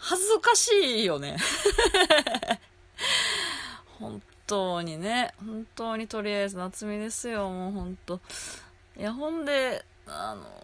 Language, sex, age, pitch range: Japanese, female, 20-39, 180-250 Hz